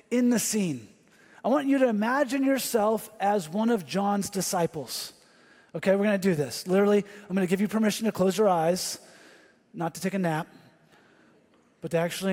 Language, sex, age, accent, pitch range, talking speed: English, male, 30-49, American, 165-215 Hz, 190 wpm